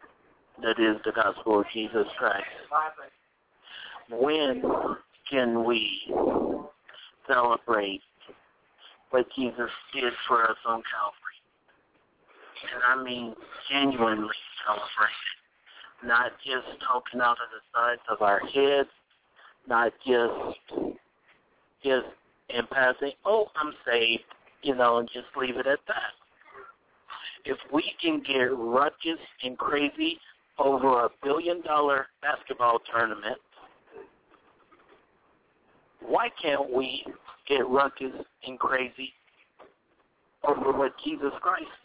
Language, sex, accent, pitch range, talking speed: English, male, American, 120-145 Hz, 105 wpm